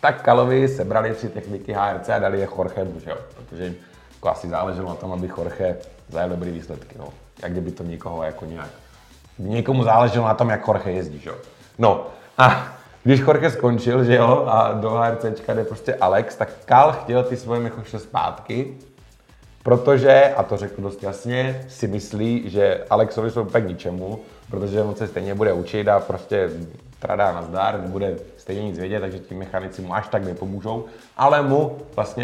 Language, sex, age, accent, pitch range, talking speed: Czech, male, 30-49, native, 95-120 Hz, 180 wpm